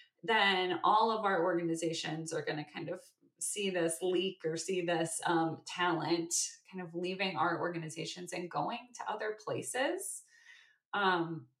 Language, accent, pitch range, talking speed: English, American, 165-195 Hz, 150 wpm